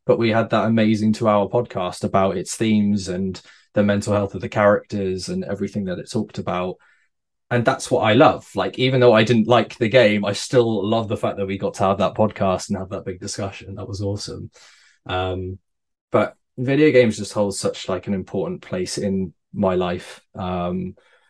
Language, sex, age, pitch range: English, male, 20-39, 100-115 Hz